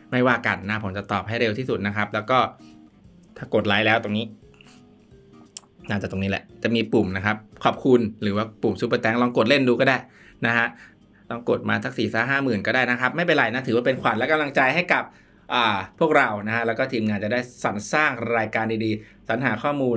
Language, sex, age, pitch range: Thai, male, 20-39, 105-120 Hz